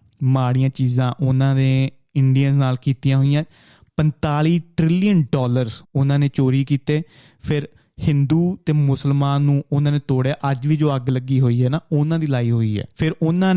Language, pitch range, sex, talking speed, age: Punjabi, 130-150 Hz, male, 170 wpm, 20-39